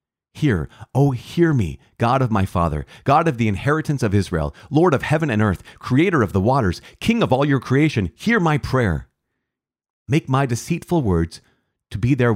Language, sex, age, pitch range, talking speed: English, male, 40-59, 85-125 Hz, 185 wpm